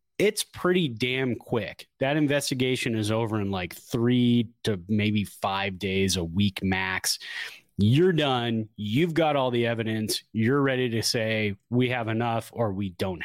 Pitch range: 110-145 Hz